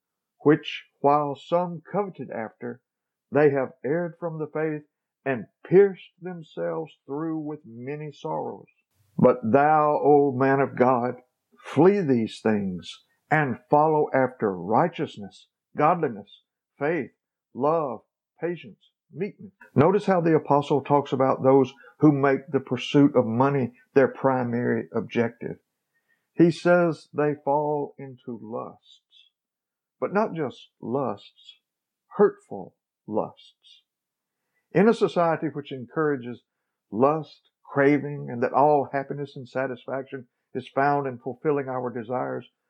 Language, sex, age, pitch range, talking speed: English, male, 50-69, 135-175 Hz, 115 wpm